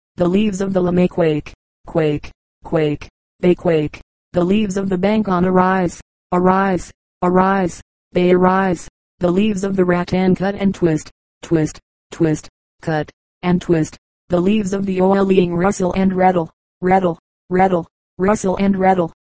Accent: American